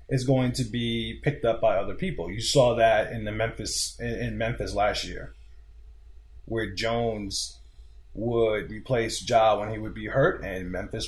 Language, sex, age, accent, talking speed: English, male, 30-49, American, 170 wpm